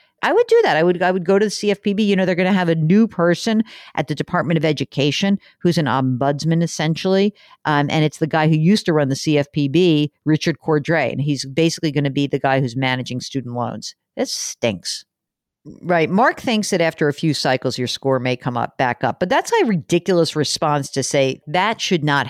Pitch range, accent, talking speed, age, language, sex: 140-195 Hz, American, 220 wpm, 50-69, English, female